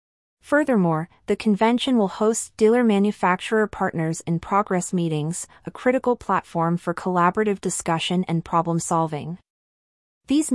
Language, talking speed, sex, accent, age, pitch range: English, 90 wpm, female, American, 30-49, 170-205 Hz